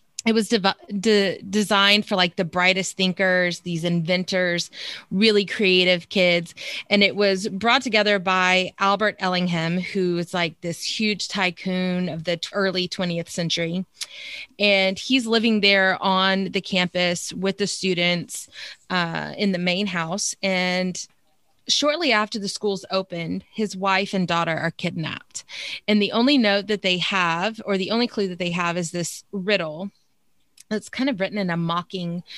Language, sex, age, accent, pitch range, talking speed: English, female, 30-49, American, 180-205 Hz, 155 wpm